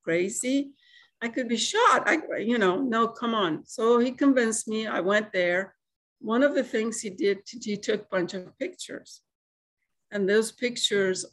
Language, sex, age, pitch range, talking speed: English, female, 60-79, 185-225 Hz, 175 wpm